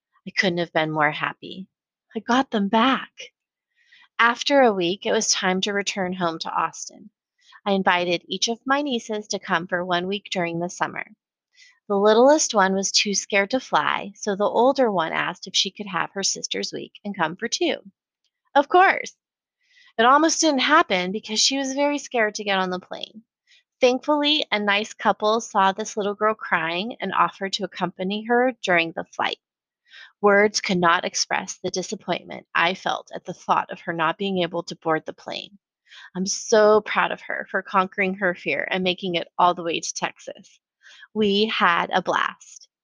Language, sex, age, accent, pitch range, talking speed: English, female, 30-49, American, 185-230 Hz, 185 wpm